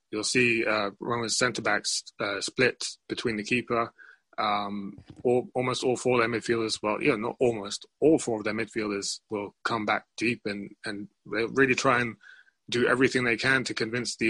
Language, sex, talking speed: English, male, 190 wpm